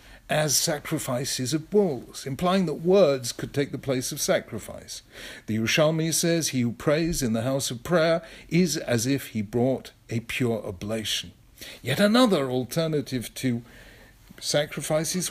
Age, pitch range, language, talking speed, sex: 50-69, 130-180 Hz, English, 145 wpm, male